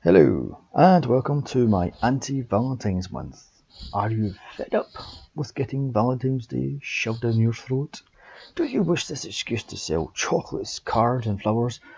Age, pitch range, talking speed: 30-49, 105-130 Hz, 150 wpm